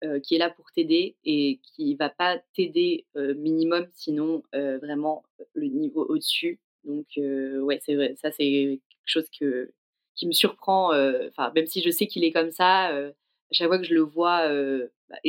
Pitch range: 155-235 Hz